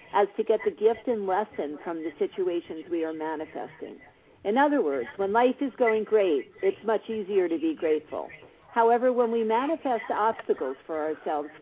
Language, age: English, 50-69